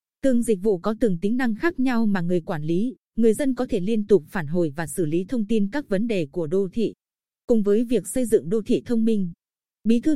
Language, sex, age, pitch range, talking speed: Vietnamese, female, 20-39, 185-240 Hz, 255 wpm